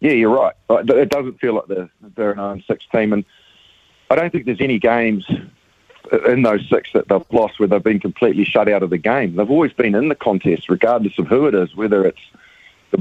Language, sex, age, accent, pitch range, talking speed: English, male, 40-59, Australian, 95-115 Hz, 220 wpm